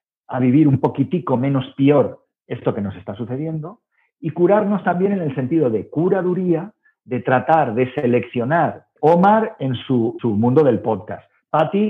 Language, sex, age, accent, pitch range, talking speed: Spanish, male, 50-69, Spanish, 115-160 Hz, 155 wpm